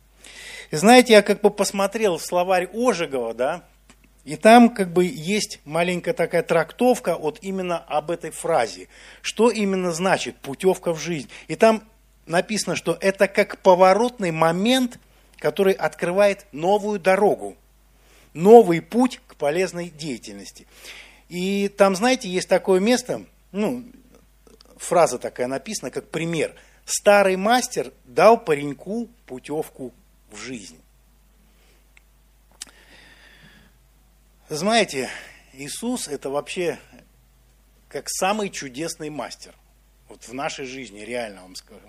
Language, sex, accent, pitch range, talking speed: Russian, male, native, 145-205 Hz, 110 wpm